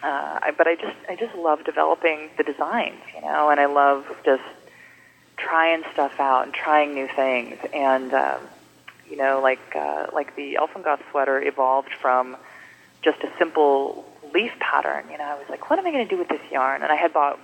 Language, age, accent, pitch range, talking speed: English, 20-39, American, 125-150 Hz, 205 wpm